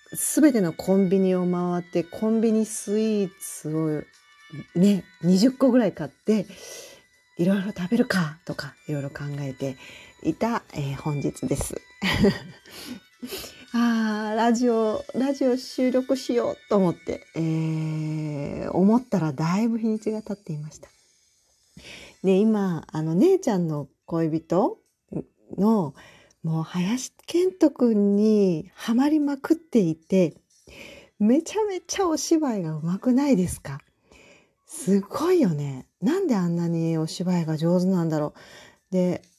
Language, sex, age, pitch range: Japanese, female, 40-59, 160-245 Hz